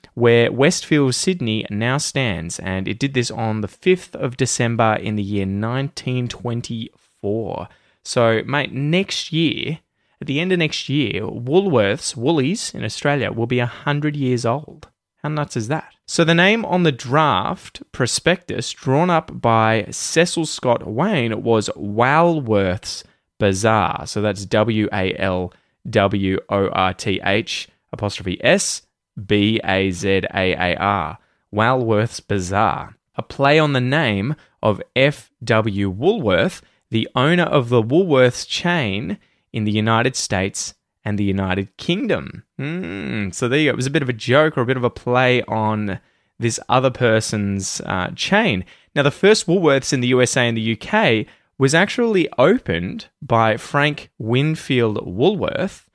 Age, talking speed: 20-39, 150 wpm